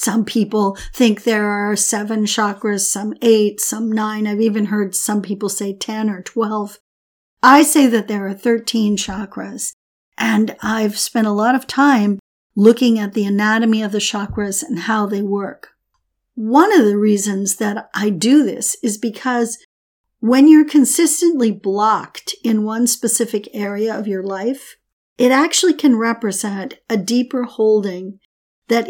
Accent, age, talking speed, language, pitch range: American, 50-69, 155 wpm, English, 205-245 Hz